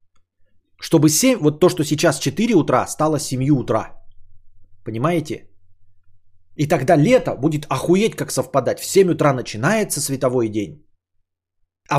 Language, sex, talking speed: Bulgarian, male, 130 wpm